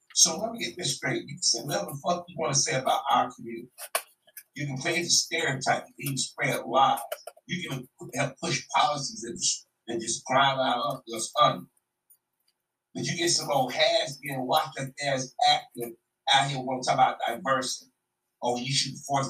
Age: 60-79